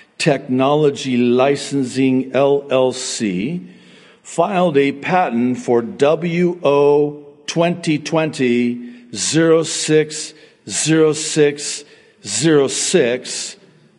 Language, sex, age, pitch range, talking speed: English, male, 60-79, 130-185 Hz, 45 wpm